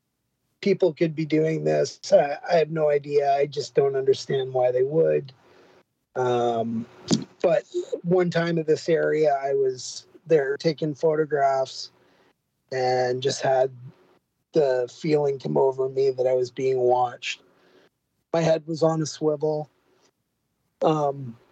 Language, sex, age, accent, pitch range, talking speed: English, male, 30-49, American, 125-165 Hz, 135 wpm